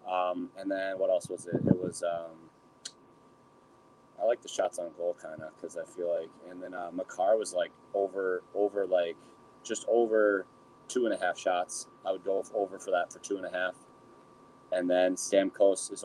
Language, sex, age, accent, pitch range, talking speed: English, male, 20-39, American, 90-125 Hz, 200 wpm